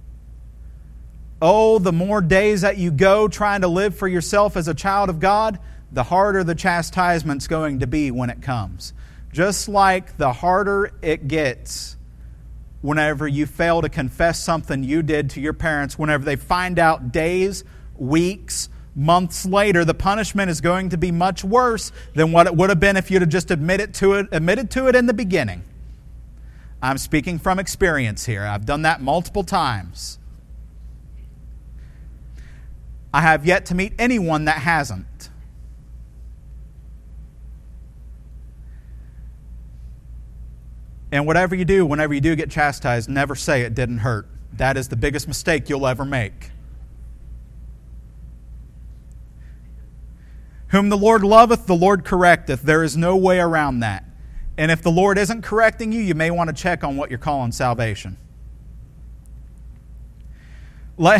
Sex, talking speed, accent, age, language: male, 145 wpm, American, 40-59, English